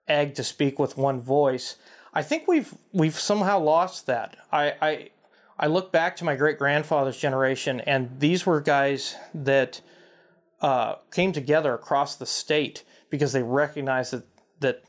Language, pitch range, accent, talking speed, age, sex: English, 135-155 Hz, American, 155 wpm, 30-49, male